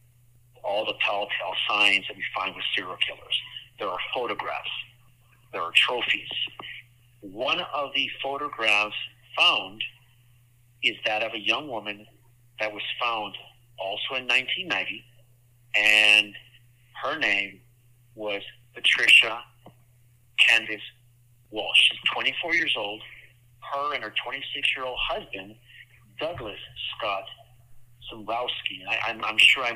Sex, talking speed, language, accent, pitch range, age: male, 115 wpm, English, American, 105-120 Hz, 50-69